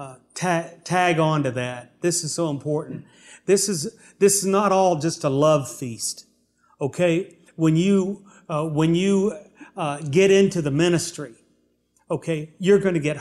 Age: 40-59